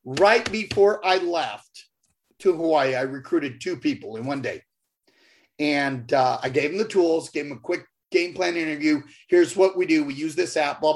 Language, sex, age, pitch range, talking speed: English, male, 40-59, 175-295 Hz, 195 wpm